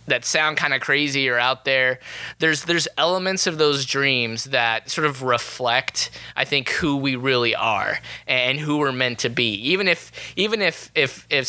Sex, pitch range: male, 125-150 Hz